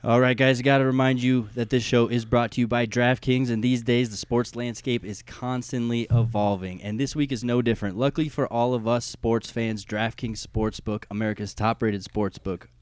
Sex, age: male, 20-39